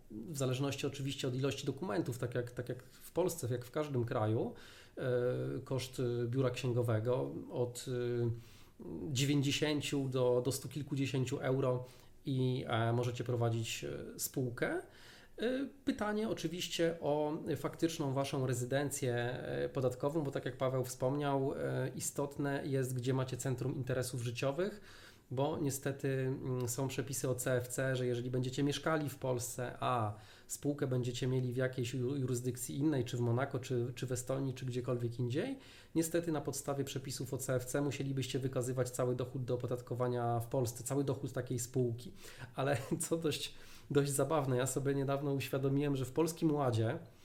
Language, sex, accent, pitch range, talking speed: Polish, male, native, 125-145 Hz, 140 wpm